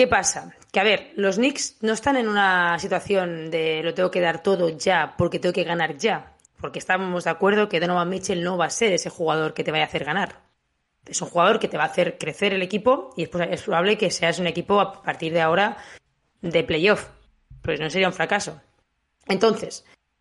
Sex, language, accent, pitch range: female, Spanish, Spanish, 160-220 Hz